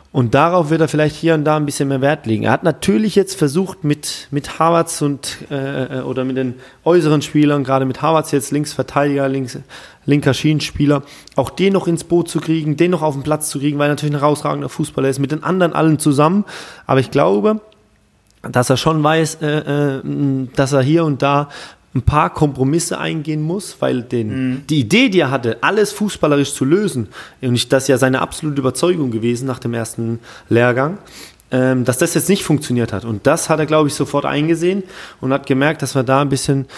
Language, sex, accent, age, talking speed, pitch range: German, male, German, 30-49, 205 wpm, 130-155 Hz